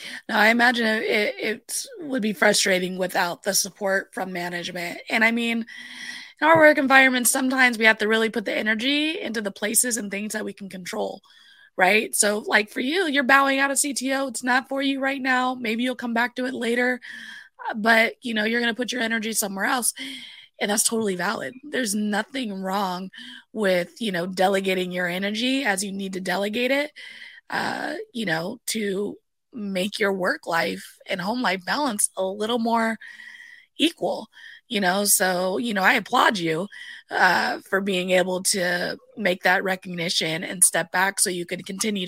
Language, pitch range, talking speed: English, 195-265 Hz, 185 wpm